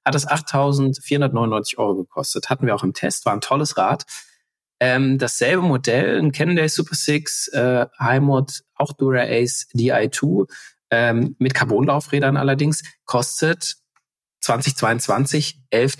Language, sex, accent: German, male, German